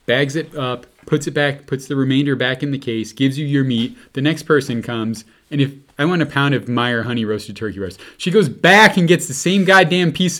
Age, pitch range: 30-49, 110-160 Hz